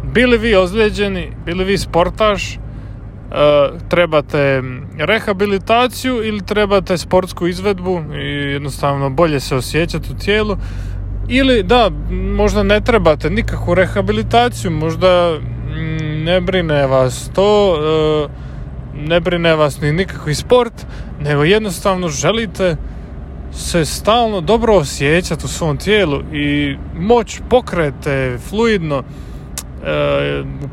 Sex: male